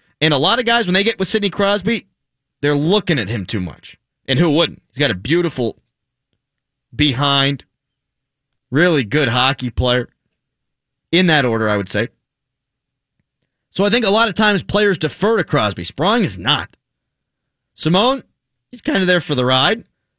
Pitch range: 130-175 Hz